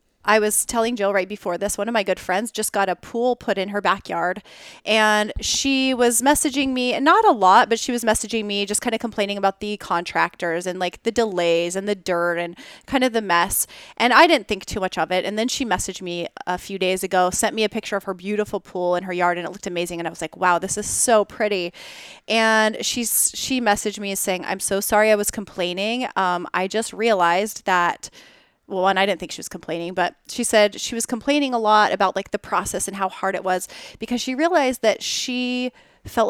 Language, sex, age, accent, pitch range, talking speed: English, female, 30-49, American, 185-225 Hz, 230 wpm